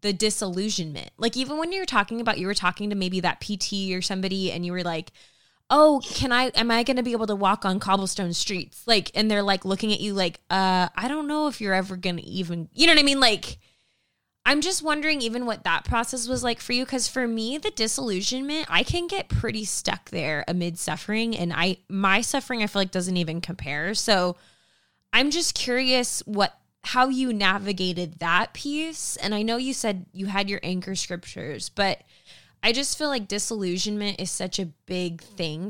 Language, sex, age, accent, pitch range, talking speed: English, female, 20-39, American, 180-235 Hz, 205 wpm